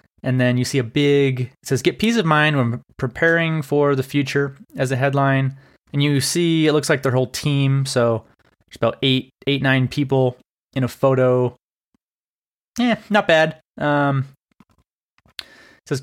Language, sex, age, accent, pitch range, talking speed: English, male, 20-39, American, 125-155 Hz, 170 wpm